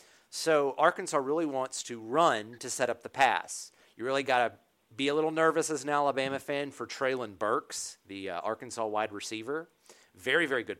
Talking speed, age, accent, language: 190 wpm, 40-59, American, English